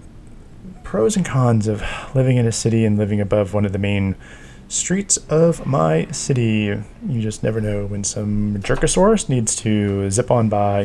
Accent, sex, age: American, male, 20-39